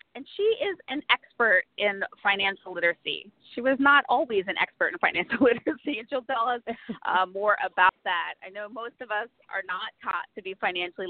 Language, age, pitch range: English, 30-49, 190-285 Hz